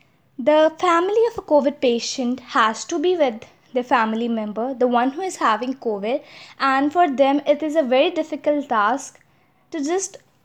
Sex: female